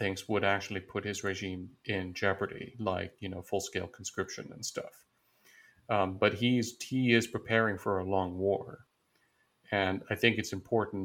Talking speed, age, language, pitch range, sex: 165 wpm, 40-59, English, 95-110 Hz, male